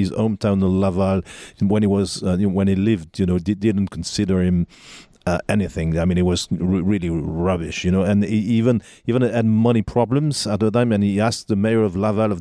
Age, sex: 40-59, male